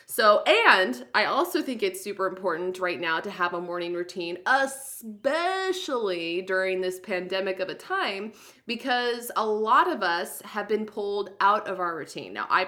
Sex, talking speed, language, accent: female, 170 wpm, English, American